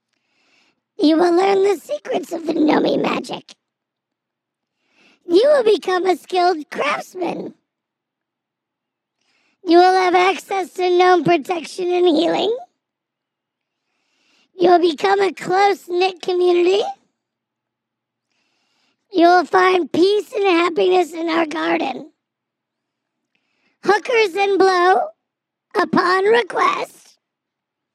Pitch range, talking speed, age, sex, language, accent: 320-390 Hz, 95 wpm, 50-69, male, English, American